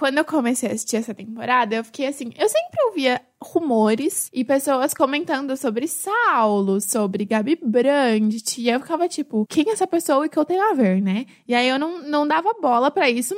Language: Portuguese